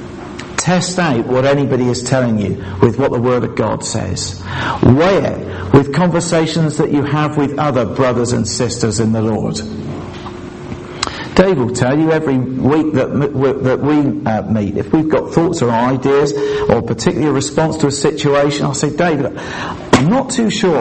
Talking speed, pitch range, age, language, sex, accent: 170 wpm, 115-160 Hz, 50-69, English, male, British